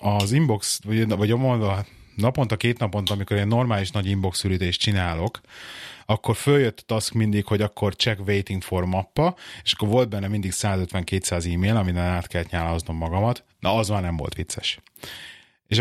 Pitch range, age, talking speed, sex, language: 90-115 Hz, 30-49, 170 wpm, male, Hungarian